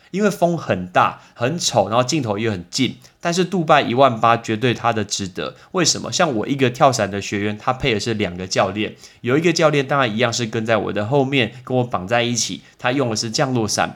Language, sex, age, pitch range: Chinese, male, 20-39, 110-155 Hz